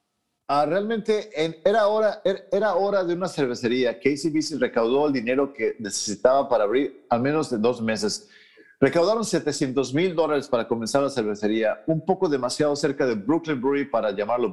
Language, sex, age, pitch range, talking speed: English, male, 50-69, 130-180 Hz, 175 wpm